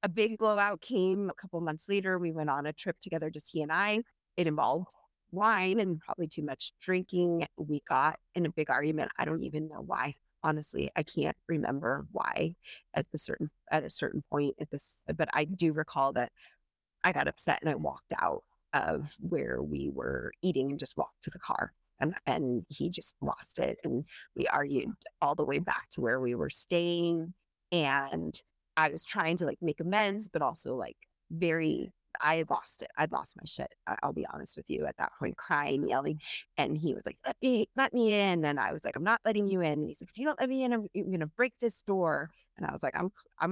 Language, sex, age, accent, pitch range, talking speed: English, female, 30-49, American, 155-200 Hz, 225 wpm